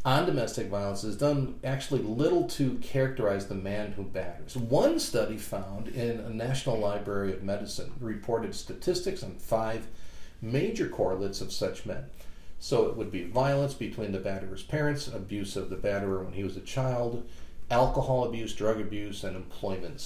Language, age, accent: English, 40-59, American